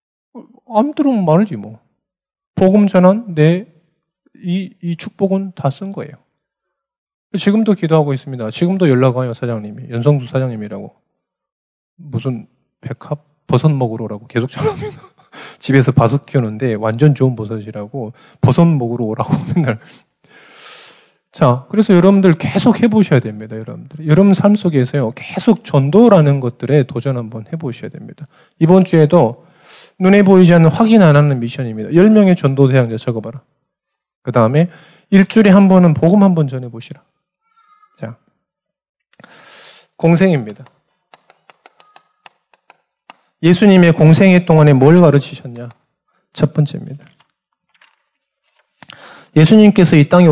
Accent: native